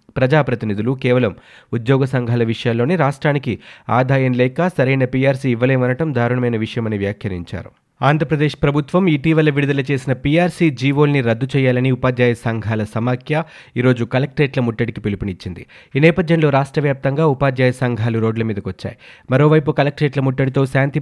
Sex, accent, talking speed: male, native, 120 wpm